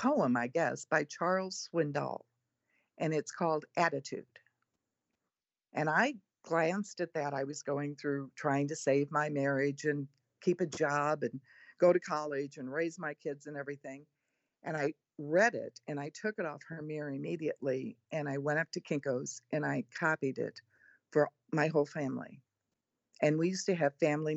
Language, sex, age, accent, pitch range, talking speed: English, female, 50-69, American, 140-175 Hz, 170 wpm